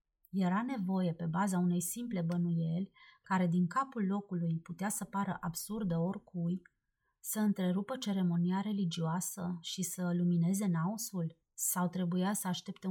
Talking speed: 130 wpm